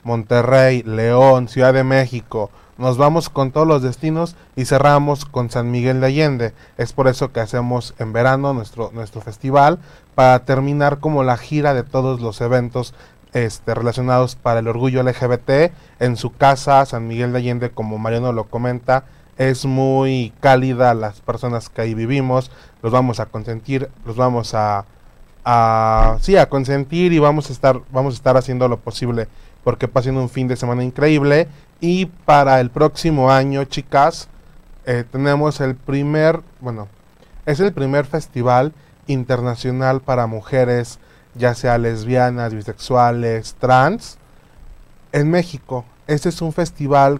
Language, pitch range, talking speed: Spanish, 120-145 Hz, 145 wpm